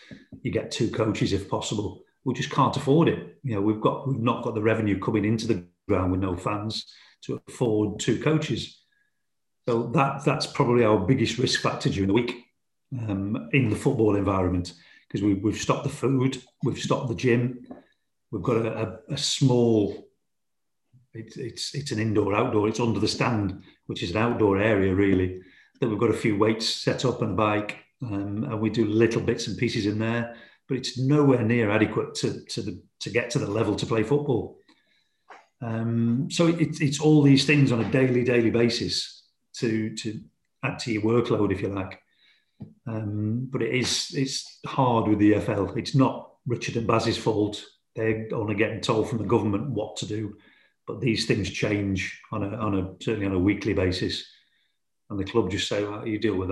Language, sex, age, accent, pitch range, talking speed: English, male, 40-59, British, 105-125 Hz, 195 wpm